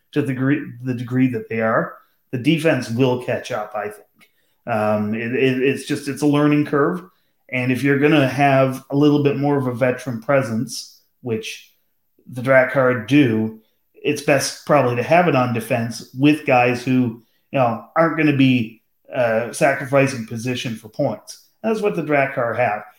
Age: 30-49